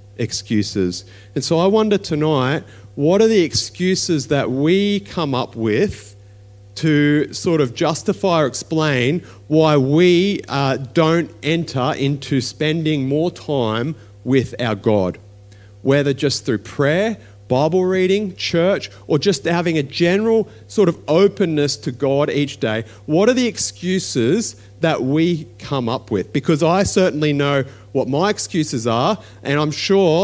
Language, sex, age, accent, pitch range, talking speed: English, male, 40-59, Australian, 115-170 Hz, 145 wpm